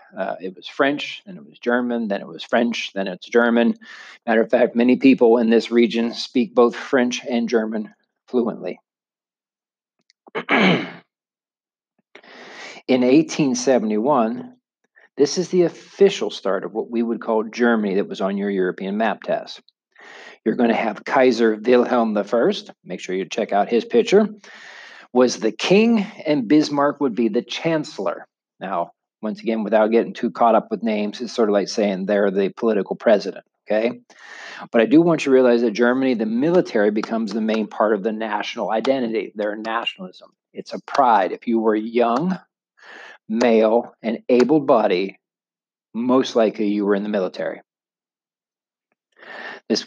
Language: English